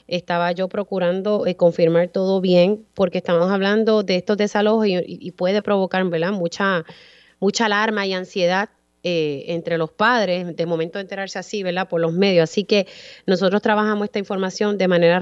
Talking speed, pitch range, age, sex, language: 175 wpm, 180-210 Hz, 30-49, female, Spanish